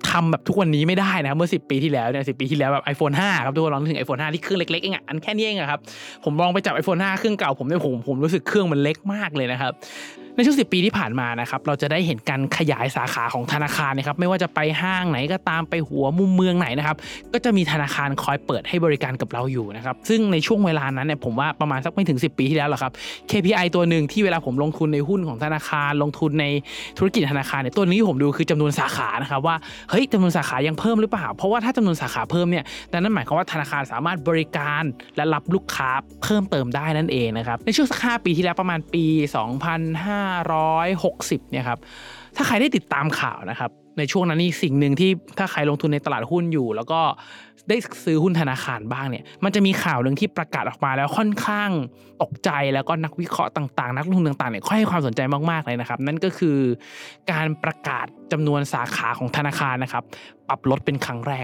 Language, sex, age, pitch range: Thai, male, 20-39, 140-185 Hz